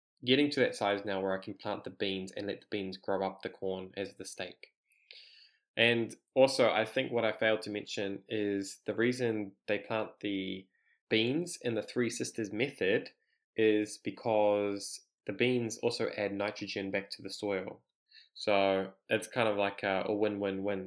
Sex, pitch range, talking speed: male, 100-110 Hz, 175 wpm